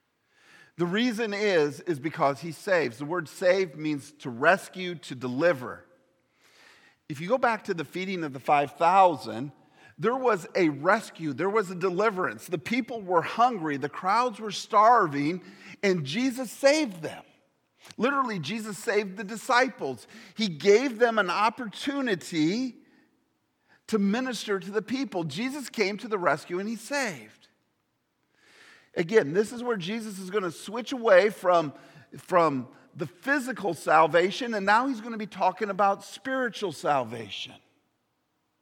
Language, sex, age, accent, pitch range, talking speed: English, male, 50-69, American, 165-235 Hz, 145 wpm